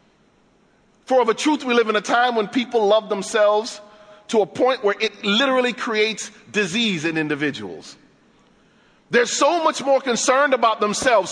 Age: 40-59